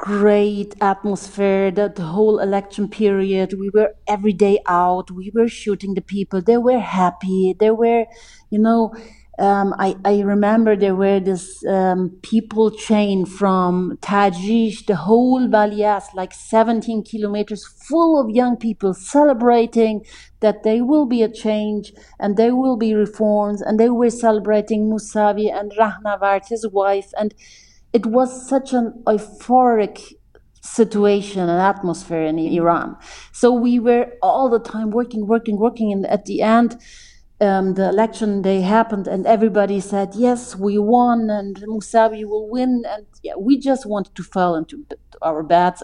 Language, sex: English, female